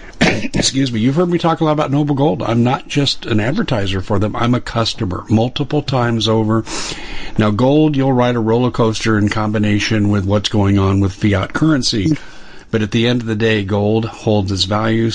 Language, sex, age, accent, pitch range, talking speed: English, male, 50-69, American, 100-115 Hz, 200 wpm